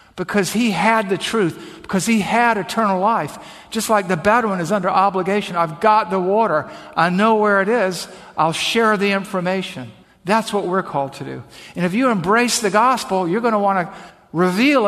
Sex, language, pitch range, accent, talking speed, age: male, English, 170-215 Hz, American, 195 wpm, 50-69